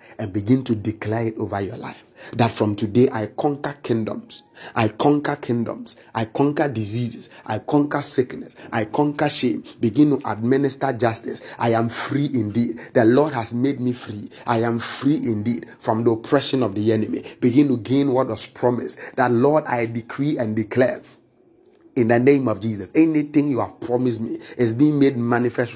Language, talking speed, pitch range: English, 175 wpm, 115-150 Hz